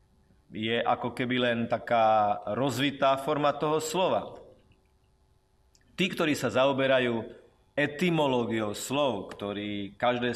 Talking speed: 100 wpm